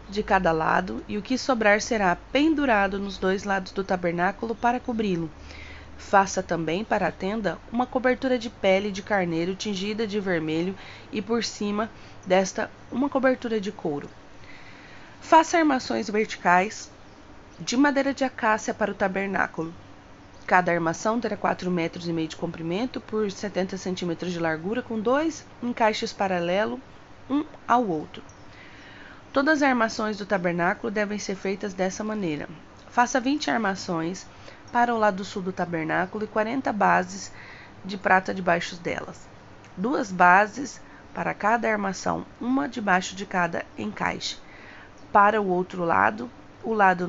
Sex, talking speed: female, 140 wpm